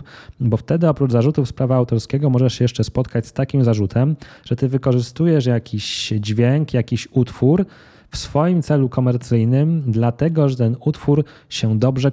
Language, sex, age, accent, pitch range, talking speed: Polish, male, 20-39, native, 115-140 Hz, 155 wpm